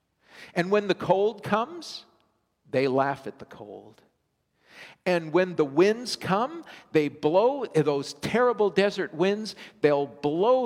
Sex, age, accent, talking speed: male, 50-69, American, 130 wpm